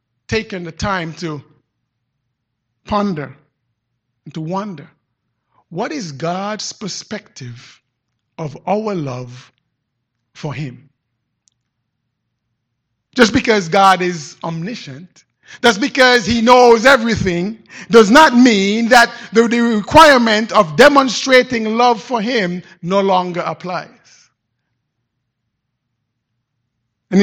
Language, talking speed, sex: English, 95 wpm, male